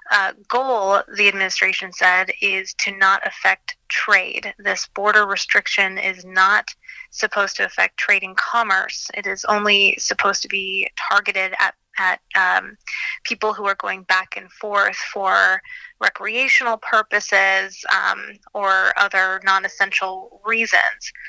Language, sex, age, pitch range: English, female, 20-39, 190-215 Hz